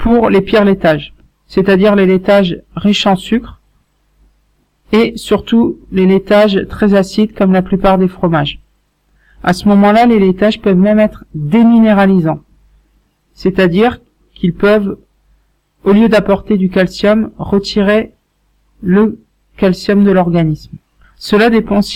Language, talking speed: French, 125 wpm